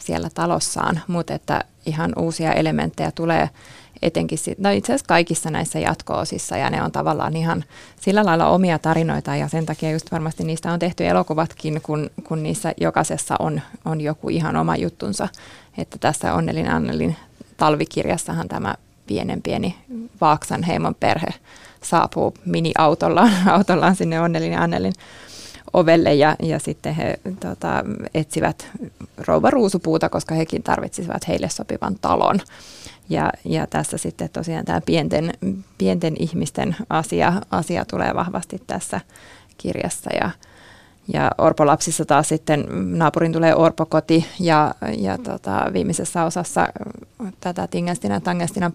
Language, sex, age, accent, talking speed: Finnish, female, 20-39, native, 130 wpm